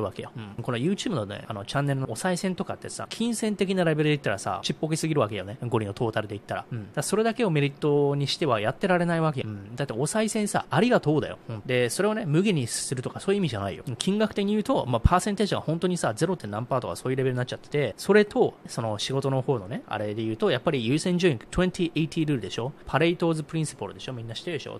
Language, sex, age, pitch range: Japanese, male, 20-39, 120-175 Hz